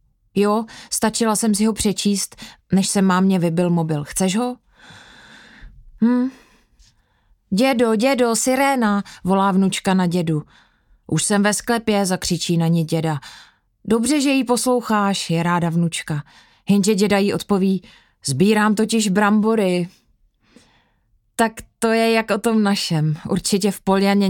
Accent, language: native, Czech